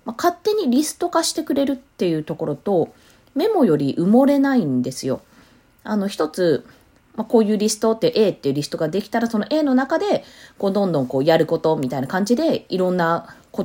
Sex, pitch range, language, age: female, 150-245 Hz, Japanese, 20-39